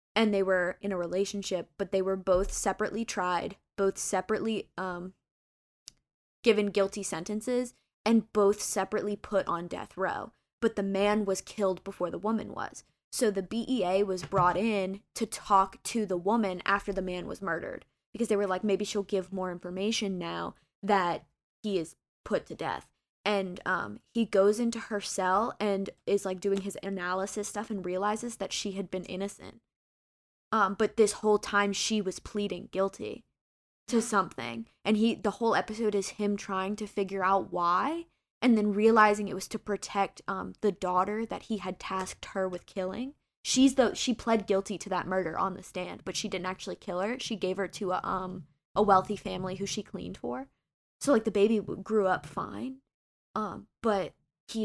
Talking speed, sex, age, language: 185 wpm, female, 20-39, English